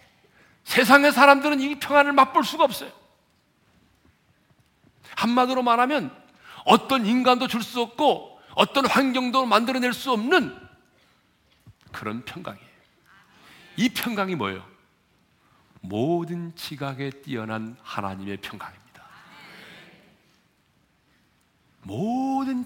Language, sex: Korean, male